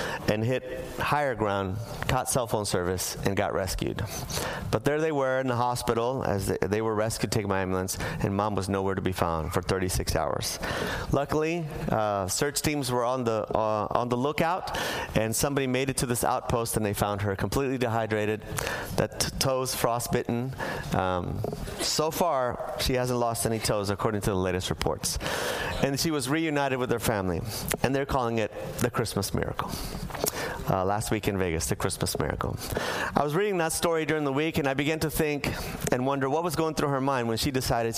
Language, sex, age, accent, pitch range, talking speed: English, male, 30-49, American, 110-160 Hz, 190 wpm